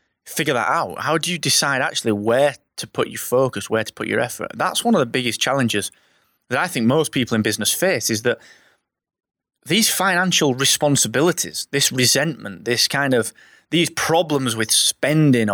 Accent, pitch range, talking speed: British, 110-155 Hz, 180 wpm